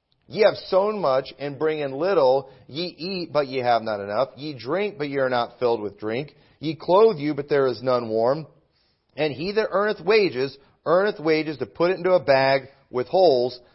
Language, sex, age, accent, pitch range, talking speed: English, male, 40-59, American, 125-170 Hz, 205 wpm